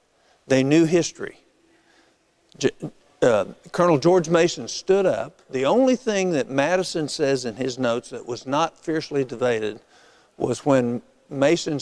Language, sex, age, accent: English, male, 50-69, American